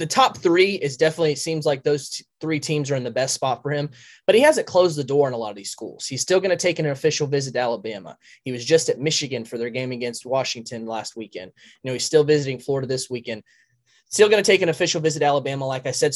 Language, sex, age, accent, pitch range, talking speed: English, male, 20-39, American, 130-155 Hz, 265 wpm